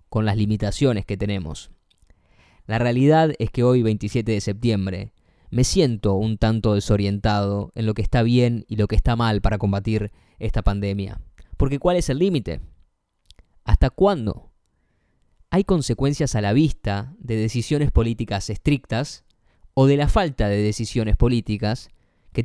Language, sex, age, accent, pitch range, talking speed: Spanish, male, 20-39, Argentinian, 105-130 Hz, 150 wpm